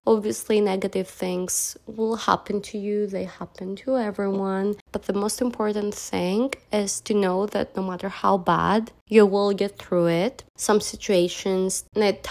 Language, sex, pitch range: English, female, 185-225 Hz